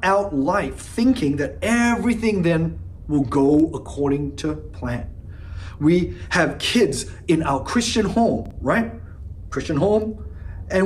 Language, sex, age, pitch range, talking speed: English, male, 30-49, 130-195 Hz, 120 wpm